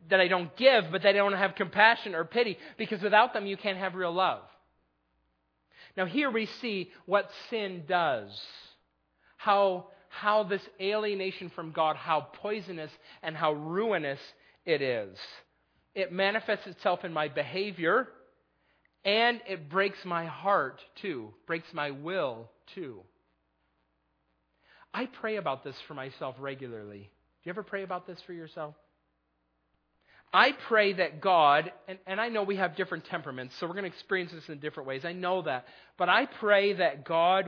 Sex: male